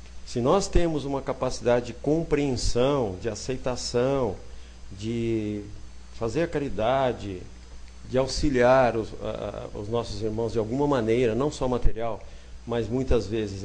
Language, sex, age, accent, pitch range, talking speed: Portuguese, male, 50-69, Brazilian, 105-135 Hz, 125 wpm